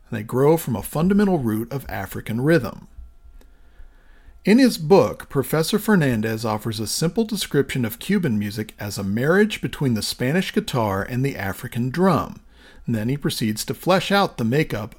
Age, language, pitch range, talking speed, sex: 40-59, English, 110-165 Hz, 165 wpm, male